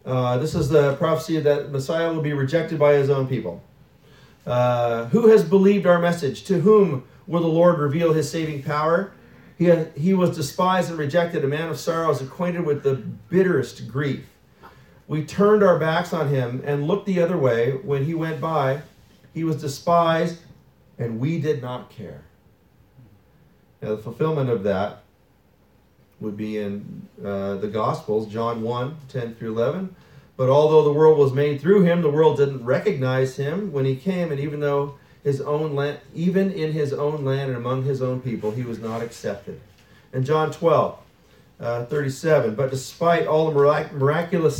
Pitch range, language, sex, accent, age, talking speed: 130-160 Hz, English, male, American, 40-59, 175 wpm